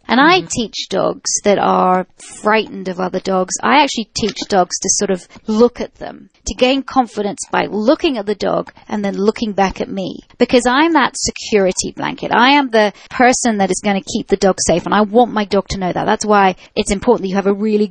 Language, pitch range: English, 195-245 Hz